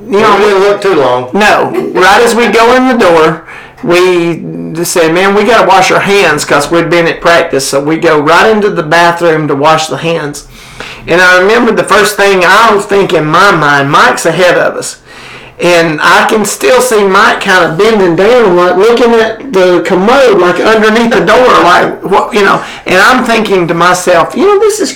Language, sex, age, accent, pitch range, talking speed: English, male, 50-69, American, 170-220 Hz, 205 wpm